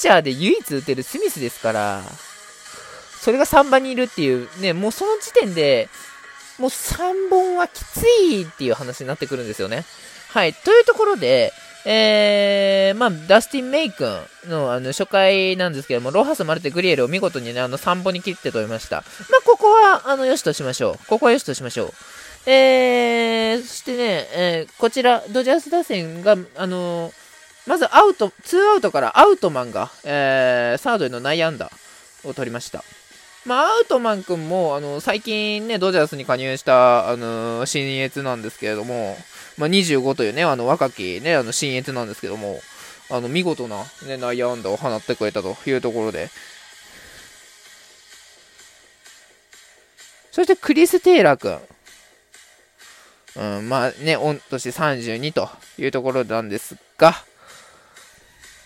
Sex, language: male, Japanese